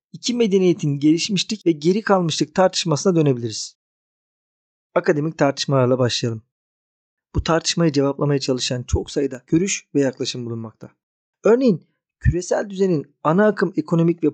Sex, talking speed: male, 115 wpm